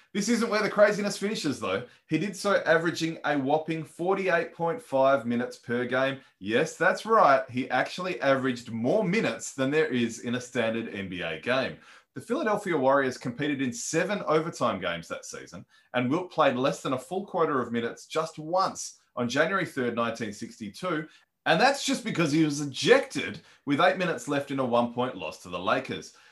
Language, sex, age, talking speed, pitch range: English, male, 20-39, 180 wpm, 125-170 Hz